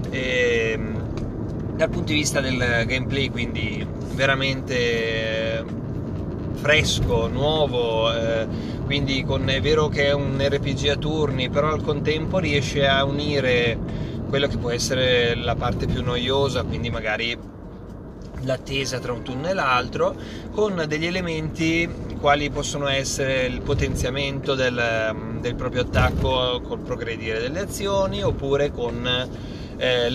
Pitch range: 115-140 Hz